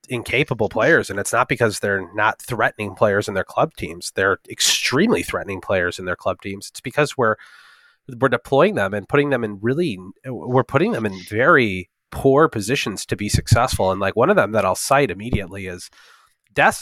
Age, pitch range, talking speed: 30-49, 95-130 Hz, 195 wpm